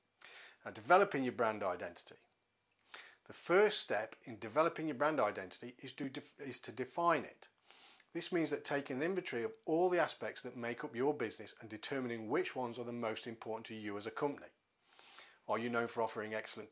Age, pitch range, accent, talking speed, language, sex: 40-59, 115-135 Hz, British, 190 wpm, English, male